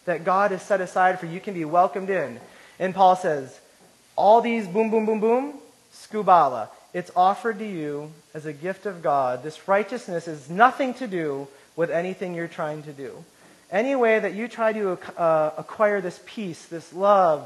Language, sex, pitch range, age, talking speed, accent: English, male, 160-215 Hz, 30-49, 185 wpm, American